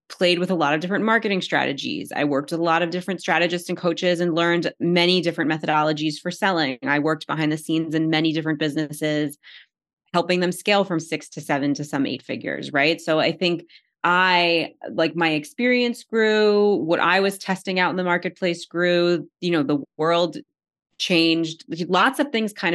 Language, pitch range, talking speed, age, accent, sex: English, 160-190 Hz, 190 wpm, 20-39, American, female